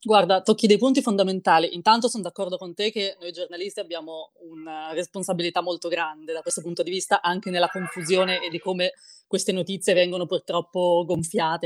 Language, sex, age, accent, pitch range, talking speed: Italian, female, 20-39, native, 170-200 Hz, 175 wpm